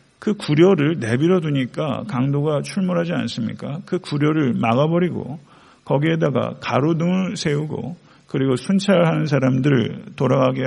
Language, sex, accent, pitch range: Korean, male, native, 130-165 Hz